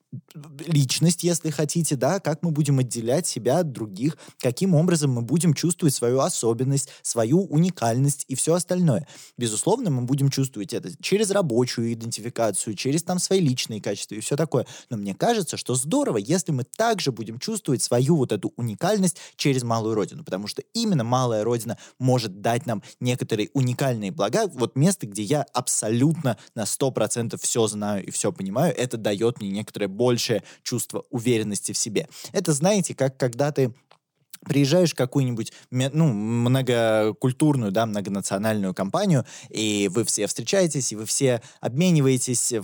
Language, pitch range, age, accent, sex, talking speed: Russian, 115-160 Hz, 20-39, native, male, 155 wpm